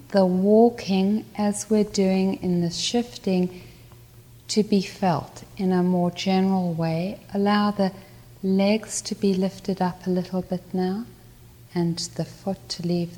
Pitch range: 155-215 Hz